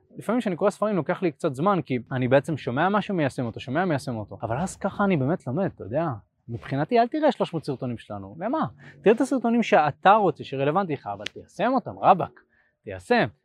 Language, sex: Hebrew, male